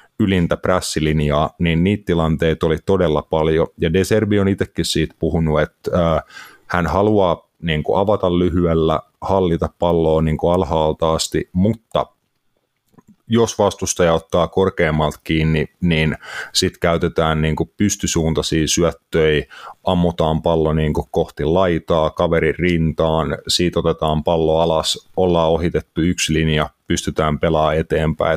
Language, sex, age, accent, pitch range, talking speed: Finnish, male, 30-49, native, 80-90 Hz, 110 wpm